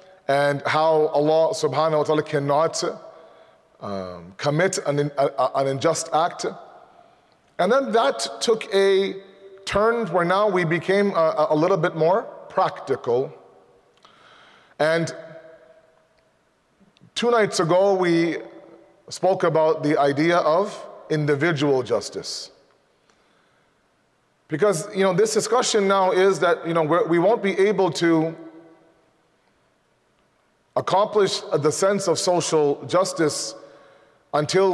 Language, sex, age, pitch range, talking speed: English, male, 30-49, 150-190 Hz, 110 wpm